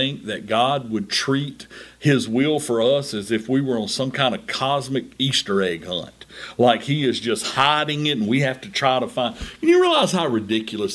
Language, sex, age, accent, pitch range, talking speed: English, male, 50-69, American, 120-165 Hz, 210 wpm